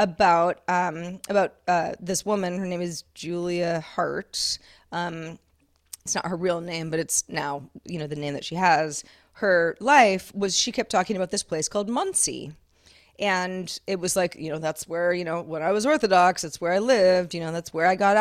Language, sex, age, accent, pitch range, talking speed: English, female, 30-49, American, 170-210 Hz, 205 wpm